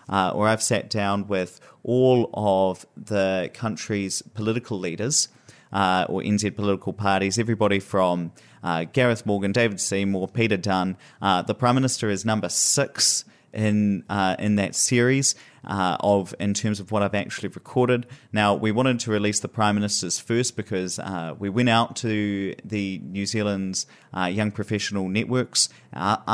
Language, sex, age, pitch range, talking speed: English, male, 30-49, 95-110 Hz, 160 wpm